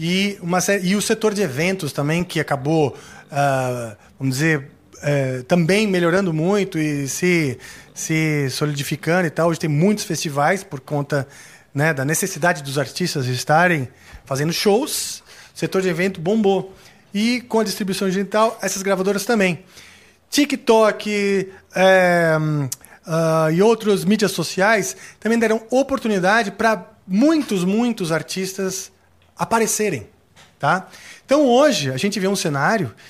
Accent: Brazilian